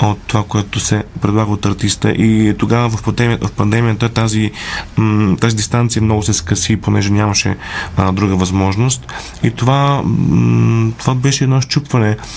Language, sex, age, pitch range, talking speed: Bulgarian, male, 30-49, 105-120 Hz, 130 wpm